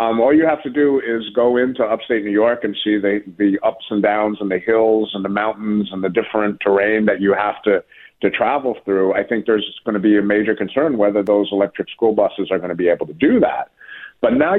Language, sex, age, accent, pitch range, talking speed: English, male, 50-69, American, 105-125 Hz, 245 wpm